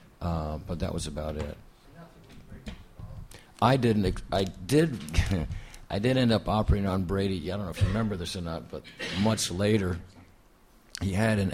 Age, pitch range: 50-69, 85-110 Hz